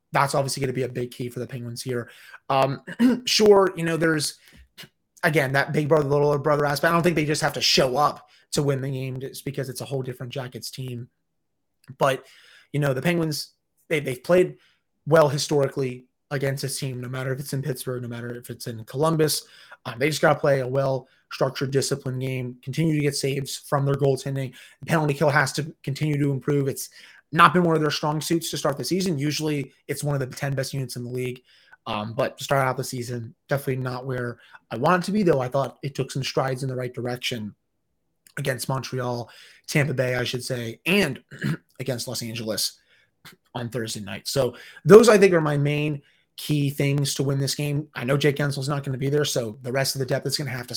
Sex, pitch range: male, 130-150 Hz